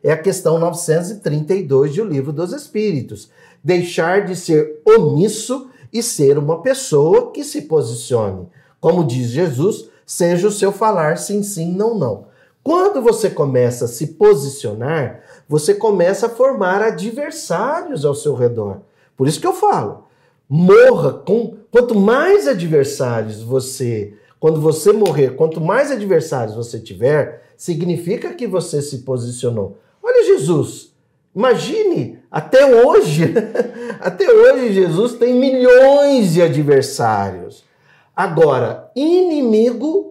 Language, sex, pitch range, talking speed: Portuguese, male, 150-250 Hz, 125 wpm